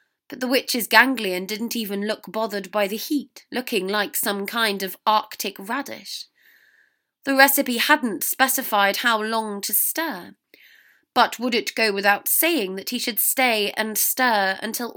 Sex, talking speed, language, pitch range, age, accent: female, 155 wpm, English, 205-260 Hz, 20-39, British